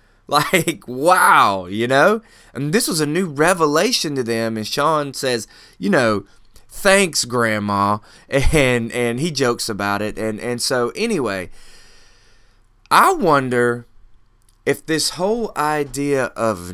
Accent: American